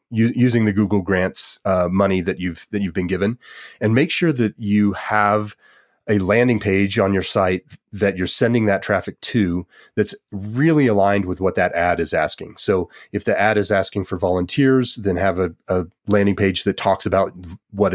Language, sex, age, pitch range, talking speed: English, male, 30-49, 90-105 Hz, 190 wpm